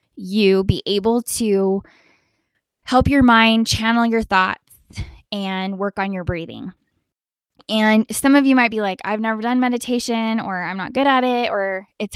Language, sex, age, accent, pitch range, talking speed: English, female, 10-29, American, 195-230 Hz, 170 wpm